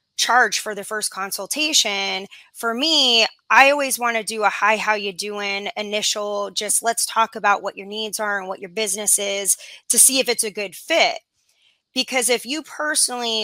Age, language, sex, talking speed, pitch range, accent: 20-39, English, female, 190 wpm, 205-240 Hz, American